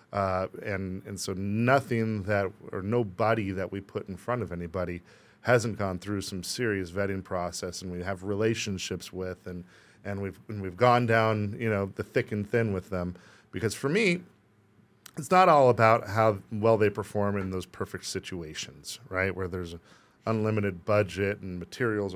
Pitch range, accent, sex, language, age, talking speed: 95-110 Hz, American, male, English, 40-59, 175 wpm